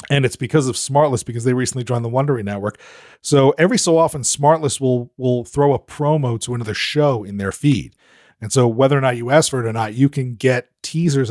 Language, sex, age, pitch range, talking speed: English, male, 30-49, 125-145 Hz, 230 wpm